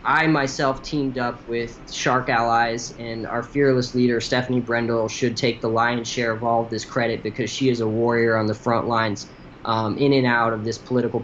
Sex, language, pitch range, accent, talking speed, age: male, English, 115-130 Hz, American, 205 wpm, 20-39